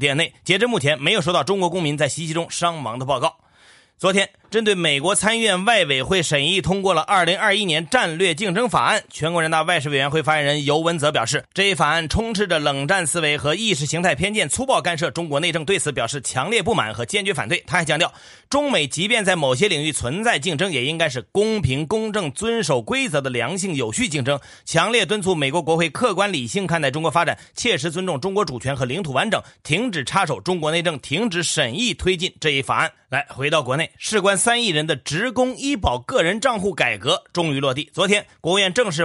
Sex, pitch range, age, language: male, 145-195 Hz, 30-49, Chinese